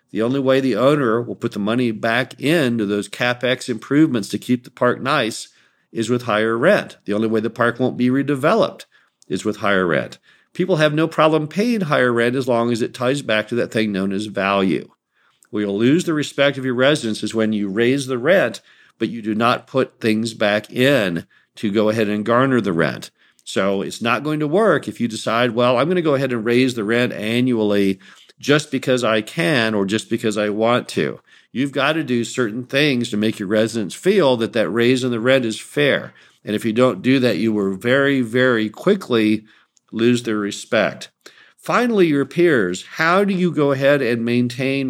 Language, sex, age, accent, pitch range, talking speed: English, male, 50-69, American, 110-135 Hz, 210 wpm